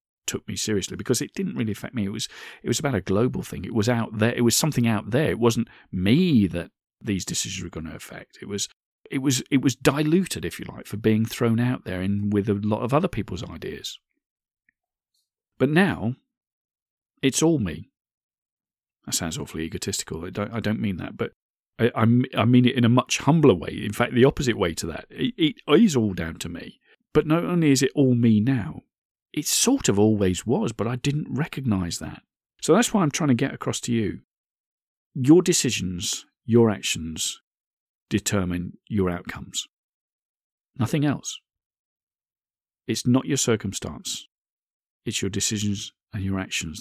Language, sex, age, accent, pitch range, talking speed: English, male, 40-59, British, 95-130 Hz, 185 wpm